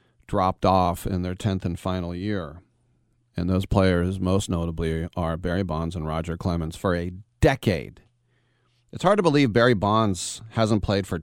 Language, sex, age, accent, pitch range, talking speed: English, male, 40-59, American, 95-120 Hz, 165 wpm